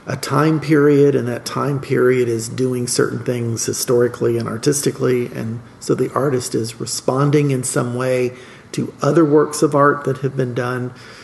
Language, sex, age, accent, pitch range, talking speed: English, male, 50-69, American, 120-145 Hz, 170 wpm